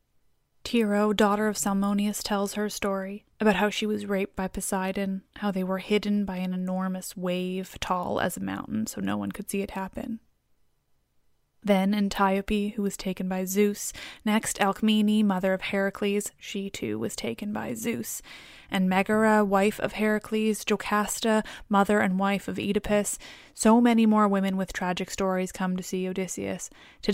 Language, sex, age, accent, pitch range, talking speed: English, female, 20-39, American, 185-210 Hz, 165 wpm